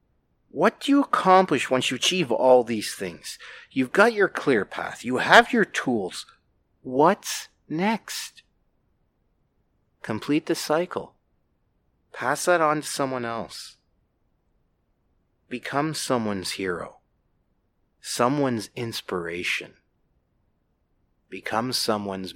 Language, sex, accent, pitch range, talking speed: English, male, American, 115-165 Hz, 100 wpm